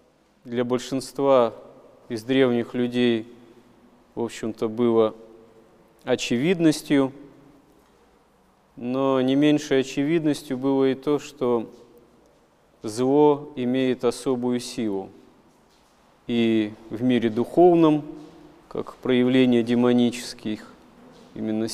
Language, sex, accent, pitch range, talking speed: Russian, male, native, 120-140 Hz, 80 wpm